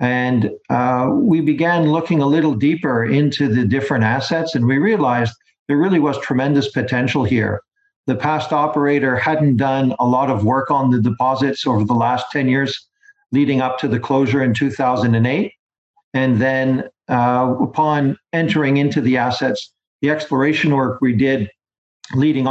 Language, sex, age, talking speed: English, male, 50-69, 155 wpm